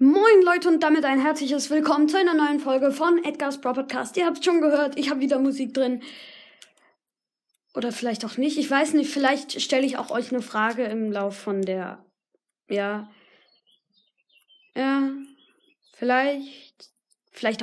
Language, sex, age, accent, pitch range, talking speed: German, female, 20-39, German, 220-295 Hz, 155 wpm